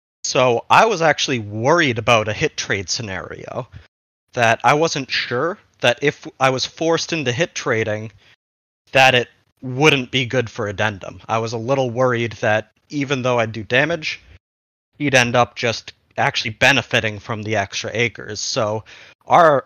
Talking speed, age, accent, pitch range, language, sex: 160 wpm, 30-49, American, 105-135 Hz, English, male